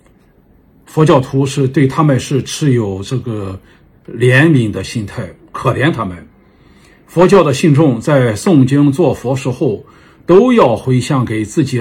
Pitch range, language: 120-150 Hz, Chinese